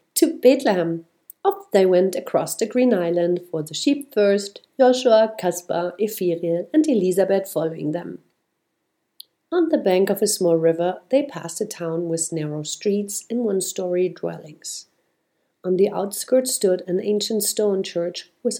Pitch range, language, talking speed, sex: 175-205 Hz, English, 150 wpm, female